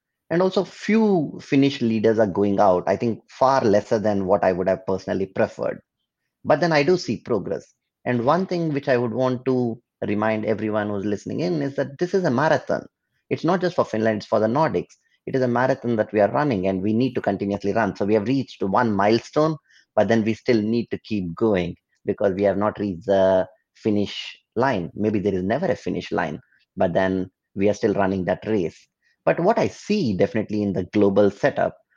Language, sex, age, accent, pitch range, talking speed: English, male, 30-49, Indian, 95-125 Hz, 210 wpm